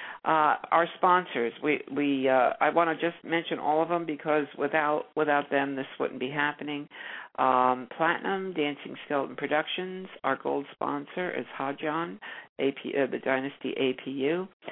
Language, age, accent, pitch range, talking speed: English, 60-79, American, 130-165 Hz, 165 wpm